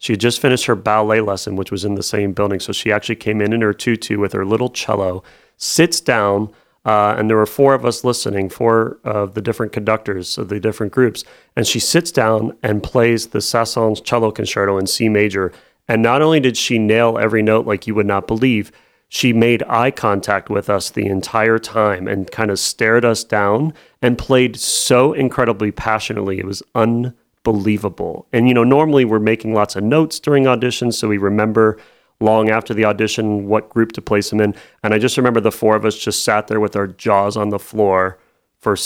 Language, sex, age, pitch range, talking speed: English, male, 30-49, 100-115 Hz, 210 wpm